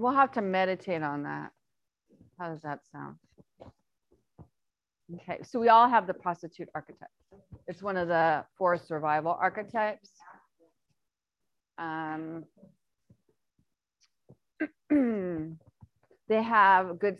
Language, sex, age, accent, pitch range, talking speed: English, female, 30-49, American, 160-195 Hz, 100 wpm